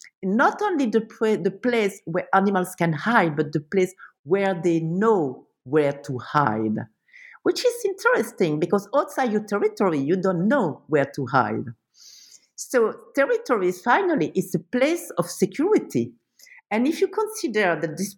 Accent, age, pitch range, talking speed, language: French, 50-69, 155-230 Hz, 150 wpm, English